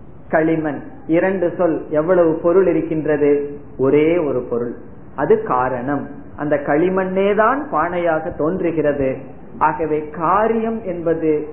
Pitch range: 145-185 Hz